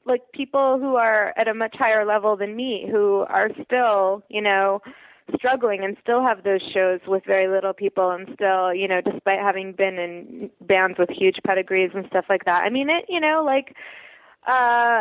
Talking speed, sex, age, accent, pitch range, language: 195 wpm, female, 20-39, American, 195-250 Hz, English